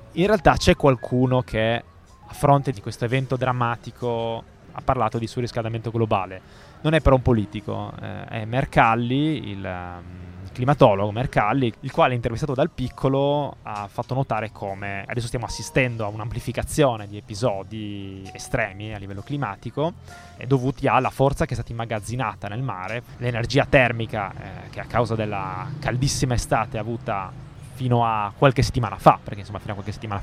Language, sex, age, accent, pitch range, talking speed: Italian, male, 20-39, native, 110-135 Hz, 150 wpm